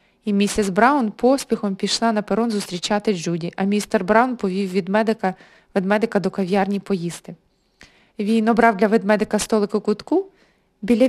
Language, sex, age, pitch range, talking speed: Ukrainian, female, 20-39, 195-240 Hz, 135 wpm